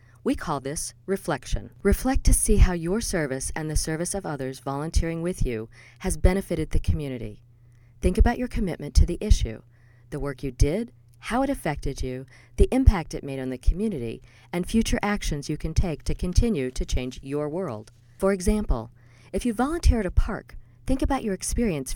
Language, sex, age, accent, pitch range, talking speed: English, female, 40-59, American, 120-190 Hz, 185 wpm